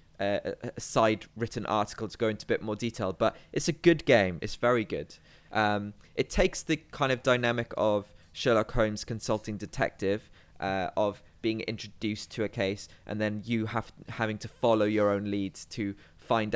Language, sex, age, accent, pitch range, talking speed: English, male, 20-39, British, 105-125 Hz, 185 wpm